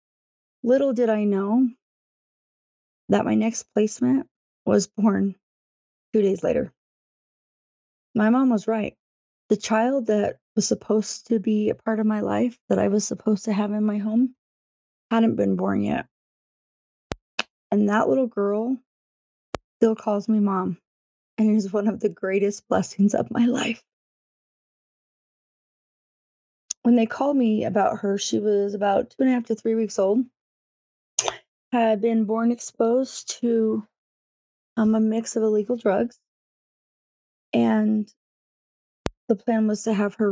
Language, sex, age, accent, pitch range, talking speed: English, female, 20-39, American, 200-230 Hz, 140 wpm